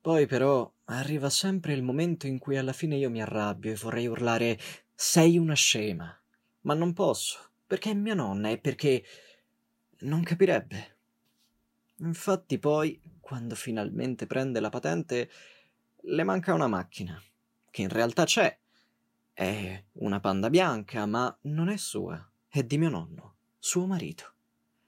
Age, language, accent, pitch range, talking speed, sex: 20-39, Italian, native, 110-180 Hz, 140 wpm, male